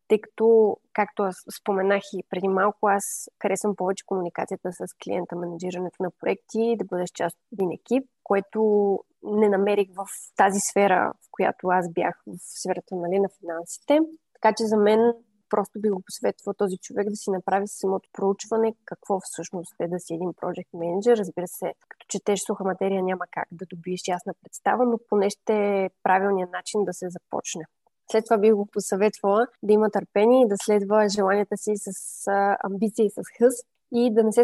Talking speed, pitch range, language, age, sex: 180 wpm, 195-225 Hz, Bulgarian, 20-39, female